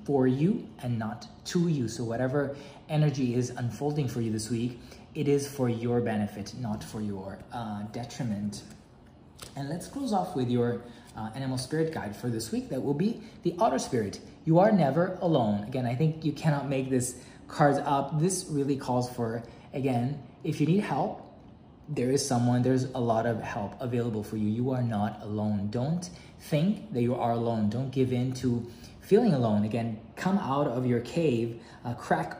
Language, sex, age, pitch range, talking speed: English, male, 20-39, 115-145 Hz, 185 wpm